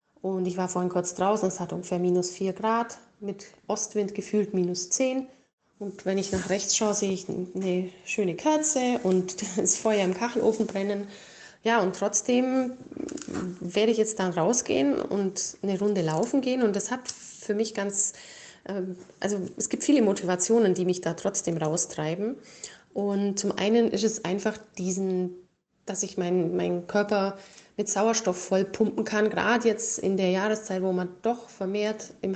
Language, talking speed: German, 165 wpm